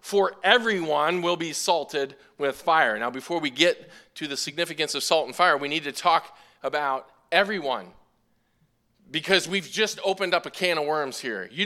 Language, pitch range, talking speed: English, 160-210 Hz, 180 wpm